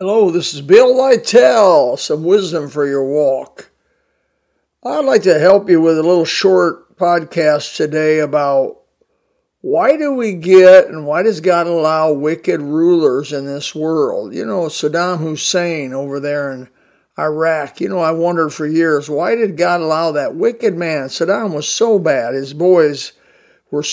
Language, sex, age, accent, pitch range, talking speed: English, male, 60-79, American, 150-185 Hz, 160 wpm